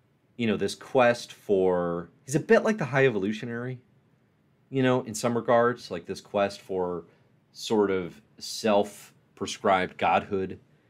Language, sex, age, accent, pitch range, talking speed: English, male, 30-49, American, 95-115 Hz, 140 wpm